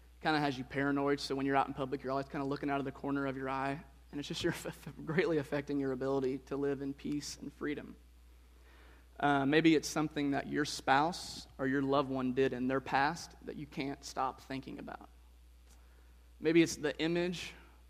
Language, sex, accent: English, male, American